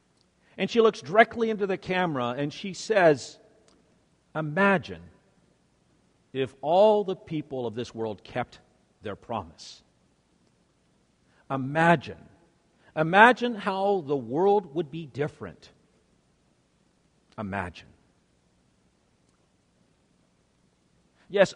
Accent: American